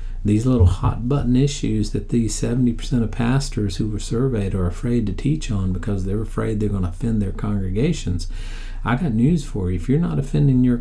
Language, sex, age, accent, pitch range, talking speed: English, male, 50-69, American, 90-120 Hz, 205 wpm